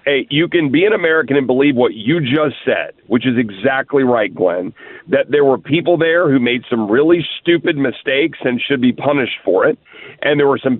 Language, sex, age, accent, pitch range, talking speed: English, male, 40-59, American, 130-170 Hz, 210 wpm